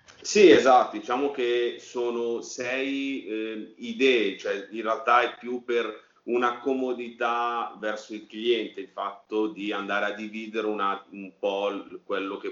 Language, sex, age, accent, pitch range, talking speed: Italian, male, 30-49, native, 100-120 Hz, 145 wpm